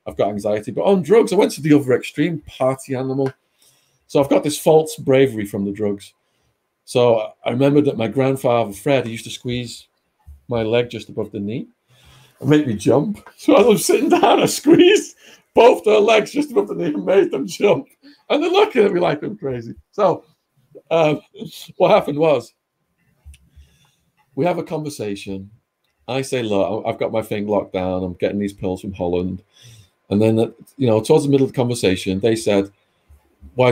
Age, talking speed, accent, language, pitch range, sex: 40-59, 190 wpm, British, English, 100-150 Hz, male